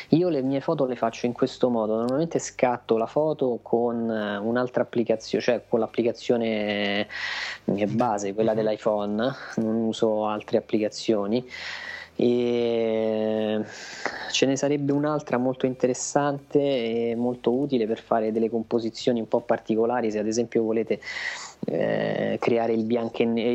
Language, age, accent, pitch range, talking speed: Italian, 20-39, native, 110-125 Hz, 130 wpm